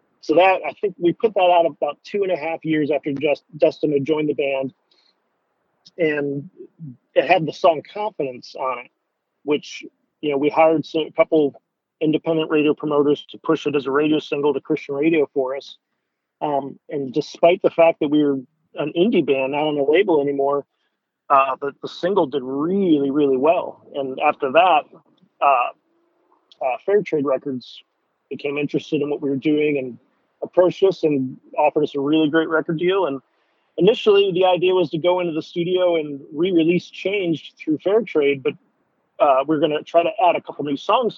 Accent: American